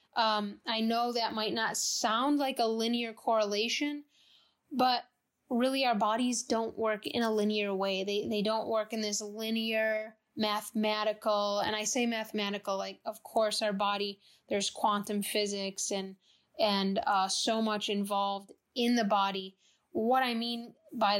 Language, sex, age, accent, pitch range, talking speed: English, female, 10-29, American, 210-240 Hz, 155 wpm